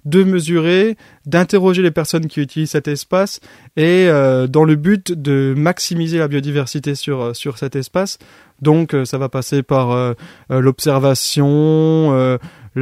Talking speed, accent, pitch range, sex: 150 wpm, French, 130-155 Hz, male